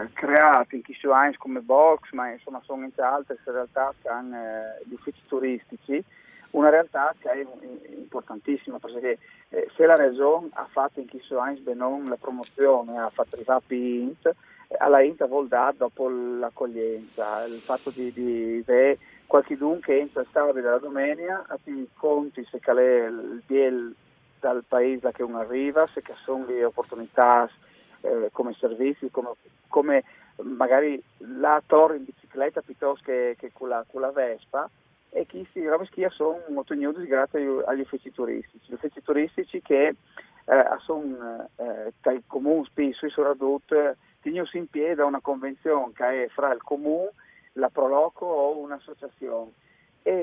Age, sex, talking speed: 30-49, male, 155 wpm